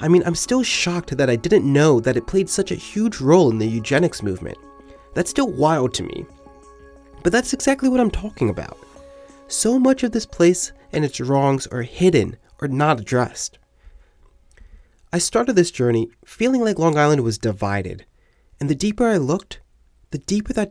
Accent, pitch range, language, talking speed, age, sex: American, 115-190 Hz, English, 185 wpm, 30-49, male